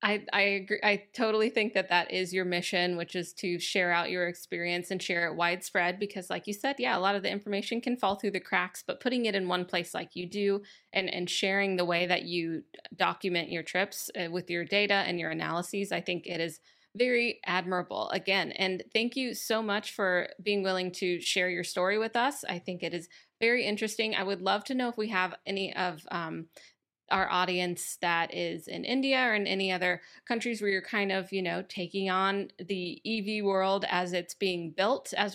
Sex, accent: female, American